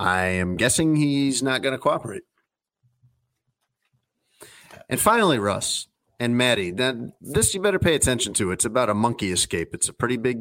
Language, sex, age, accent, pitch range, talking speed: English, male, 40-59, American, 105-135 Hz, 160 wpm